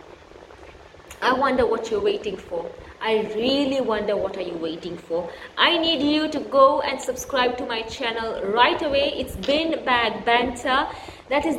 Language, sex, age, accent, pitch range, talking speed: English, female, 20-39, Indian, 215-290 Hz, 165 wpm